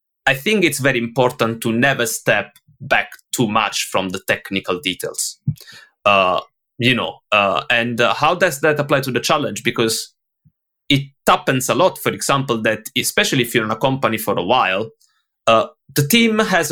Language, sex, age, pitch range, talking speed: English, male, 30-49, 120-155 Hz, 175 wpm